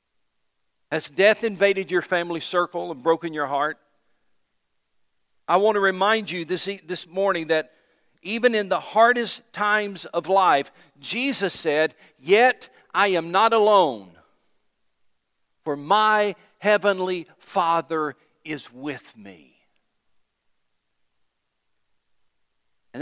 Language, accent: English, American